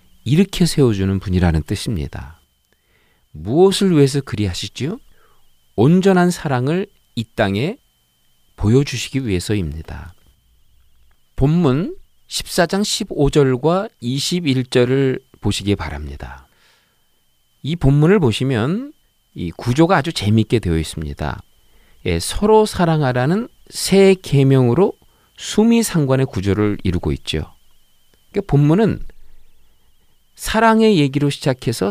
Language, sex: Korean, male